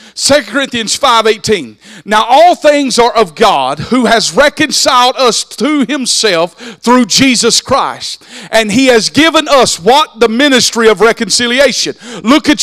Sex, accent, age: male, American, 50-69